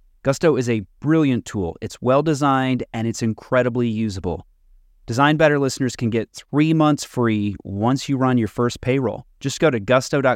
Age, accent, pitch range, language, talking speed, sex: 30-49, American, 100-135 Hz, English, 170 wpm, male